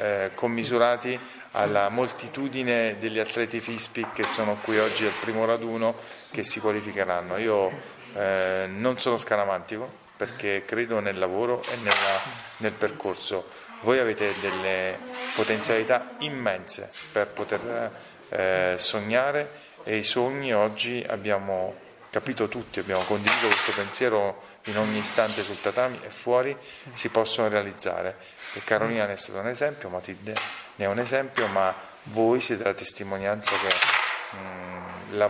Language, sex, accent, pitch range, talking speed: Italian, male, native, 100-120 Hz, 130 wpm